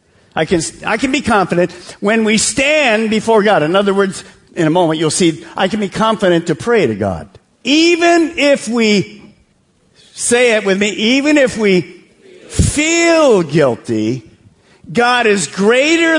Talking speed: 155 wpm